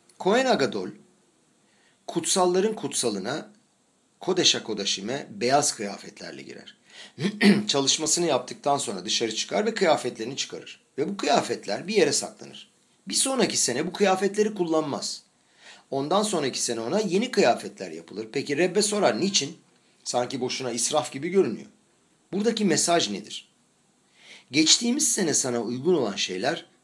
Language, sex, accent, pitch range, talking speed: Turkish, male, native, 125-205 Hz, 120 wpm